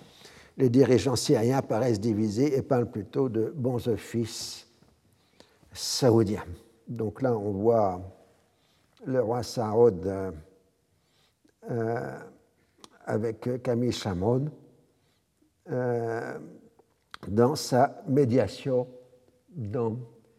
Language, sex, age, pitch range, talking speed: French, male, 60-79, 110-140 Hz, 85 wpm